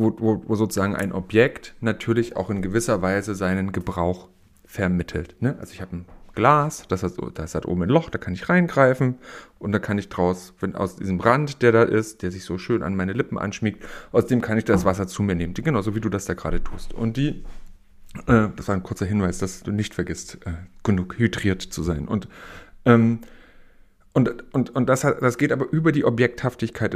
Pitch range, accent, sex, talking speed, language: 95-120 Hz, German, male, 220 wpm, German